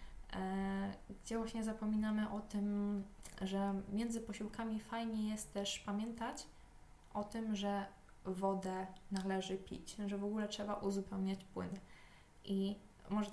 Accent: native